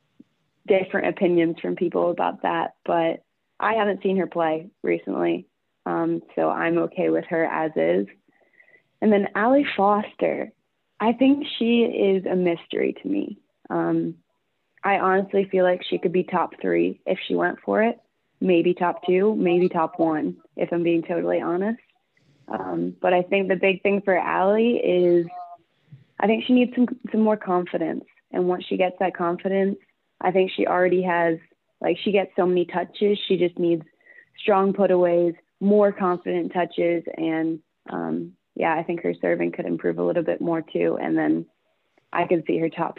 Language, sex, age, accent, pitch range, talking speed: English, female, 20-39, American, 165-205 Hz, 170 wpm